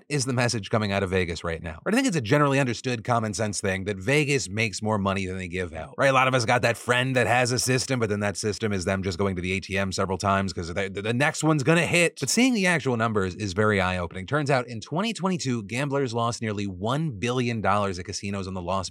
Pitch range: 100-145 Hz